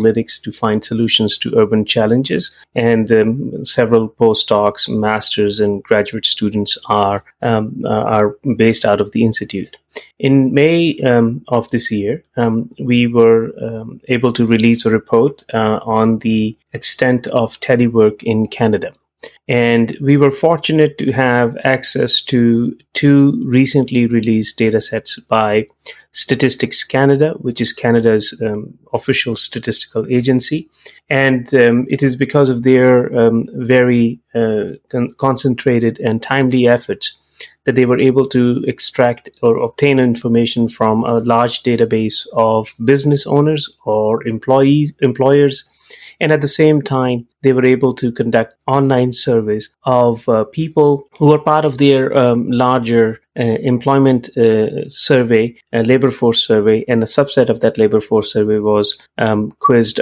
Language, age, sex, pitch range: English, 30-49, male, 110-130 Hz